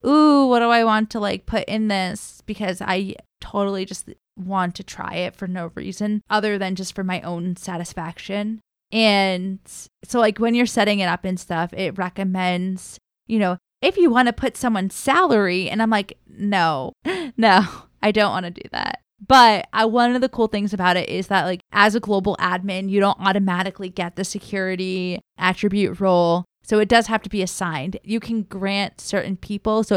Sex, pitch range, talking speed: female, 185-220 Hz, 195 wpm